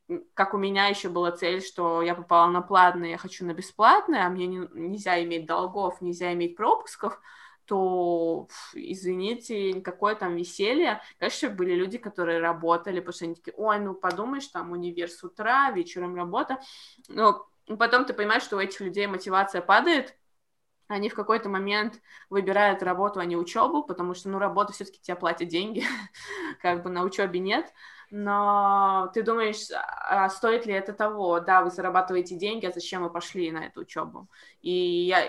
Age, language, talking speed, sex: 20-39, Russian, 165 wpm, female